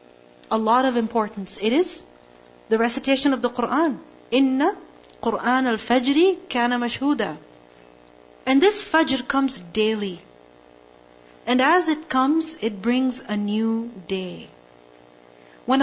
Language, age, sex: English, 40-59, female